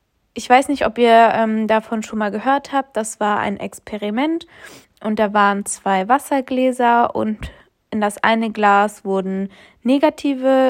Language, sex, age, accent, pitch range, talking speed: German, female, 20-39, German, 215-250 Hz, 150 wpm